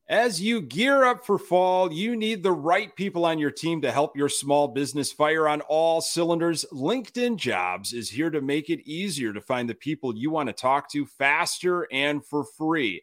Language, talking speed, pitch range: English, 205 wpm, 120-165 Hz